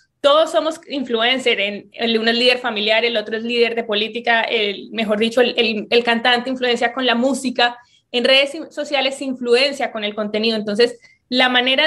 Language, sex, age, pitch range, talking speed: Spanish, female, 20-39, 225-275 Hz, 175 wpm